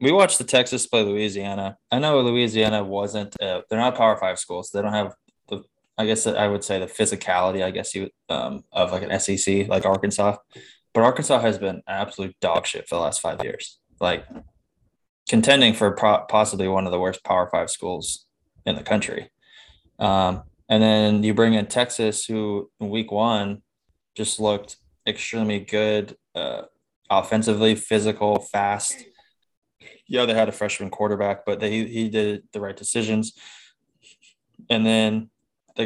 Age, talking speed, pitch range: 20-39, 165 wpm, 100-110 Hz